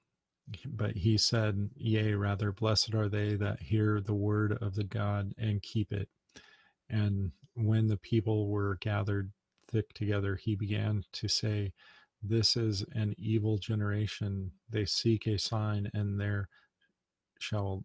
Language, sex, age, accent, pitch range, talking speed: English, male, 40-59, American, 100-110 Hz, 140 wpm